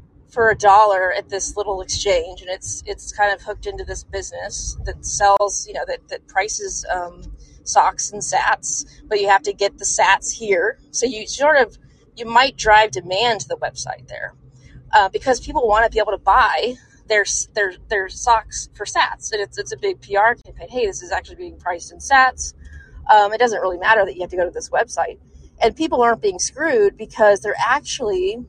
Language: English